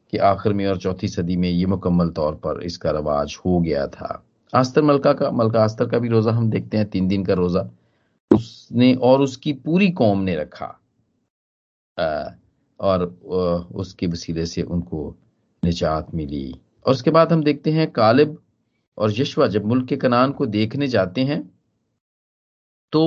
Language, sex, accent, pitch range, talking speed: Hindi, male, native, 90-130 Hz, 160 wpm